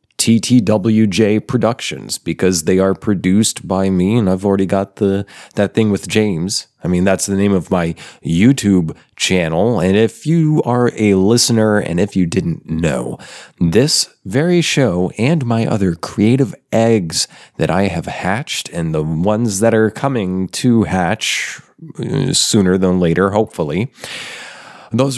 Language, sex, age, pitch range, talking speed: English, male, 30-49, 90-115 Hz, 150 wpm